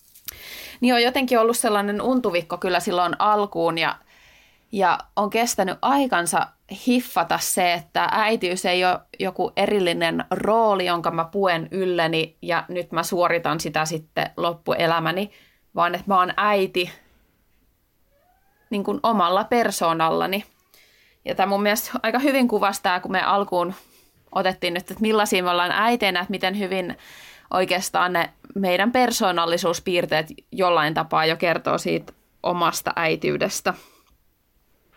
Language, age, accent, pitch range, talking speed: Finnish, 20-39, native, 175-225 Hz, 125 wpm